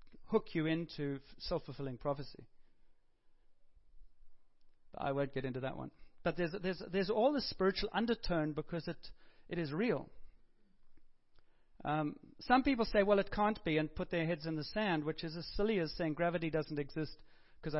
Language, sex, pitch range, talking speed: English, male, 155-200 Hz, 165 wpm